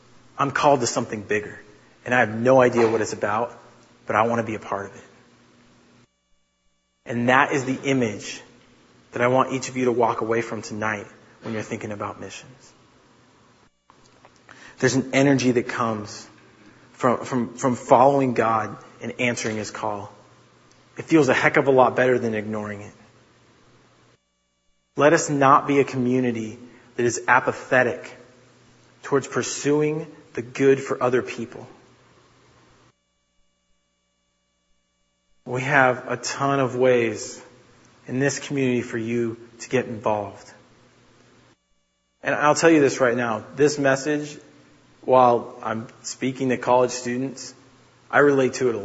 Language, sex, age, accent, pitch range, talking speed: English, male, 30-49, American, 115-135 Hz, 145 wpm